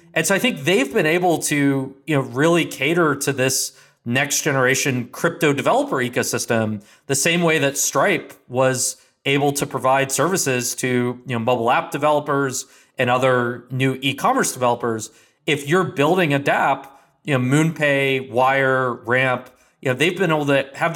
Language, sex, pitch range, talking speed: English, male, 125-155 Hz, 165 wpm